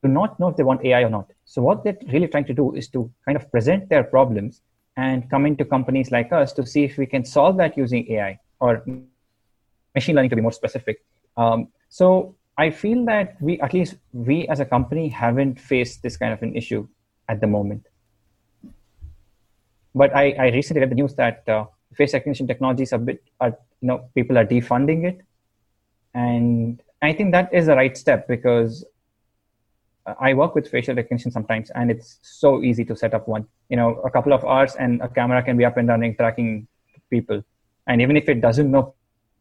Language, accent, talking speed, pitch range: English, Indian, 195 wpm, 115-140 Hz